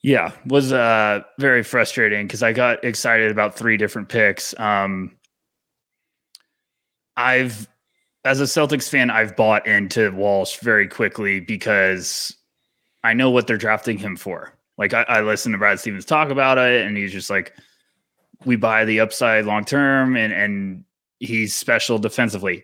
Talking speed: 155 wpm